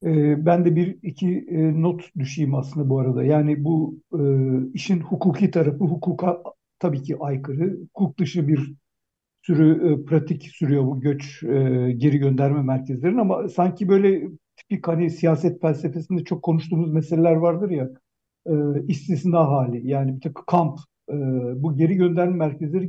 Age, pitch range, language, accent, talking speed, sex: 60-79, 145-180 Hz, Turkish, native, 145 wpm, male